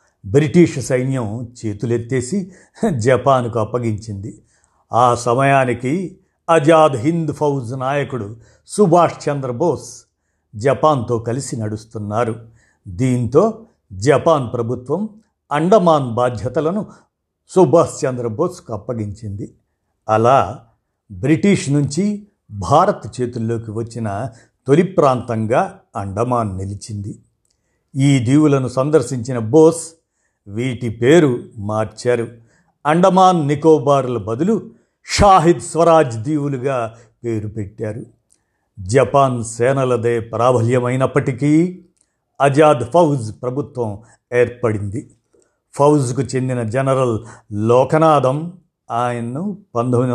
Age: 50-69